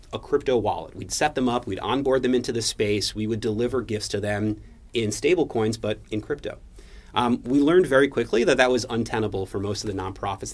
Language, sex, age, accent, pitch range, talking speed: English, male, 30-49, American, 105-120 Hz, 220 wpm